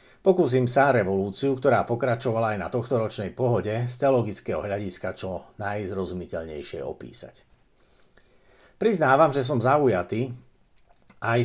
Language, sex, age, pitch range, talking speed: Slovak, male, 60-79, 100-125 Hz, 105 wpm